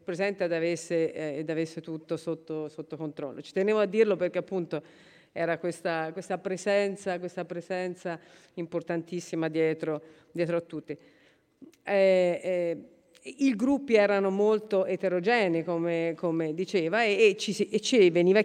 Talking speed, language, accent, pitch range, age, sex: 135 wpm, Italian, native, 165-195 Hz, 40-59, female